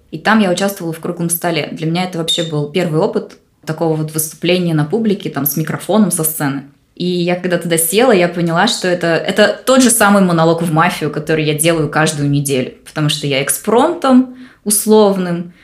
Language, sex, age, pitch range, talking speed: Russian, female, 20-39, 155-195 Hz, 190 wpm